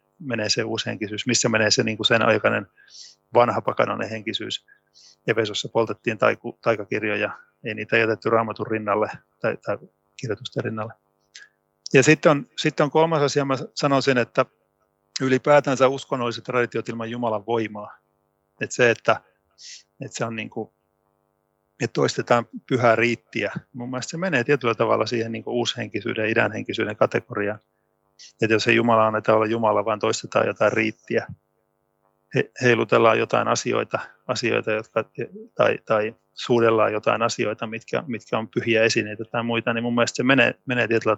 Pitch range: 110-120 Hz